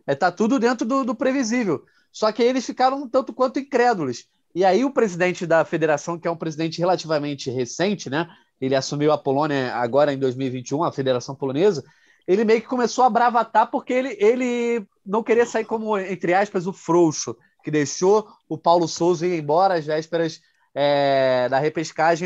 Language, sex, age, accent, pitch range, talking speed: Portuguese, male, 20-39, Brazilian, 155-220 Hz, 180 wpm